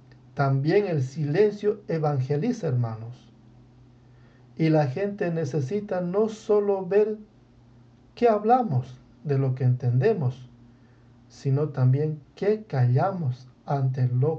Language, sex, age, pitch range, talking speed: English, male, 60-79, 125-160 Hz, 100 wpm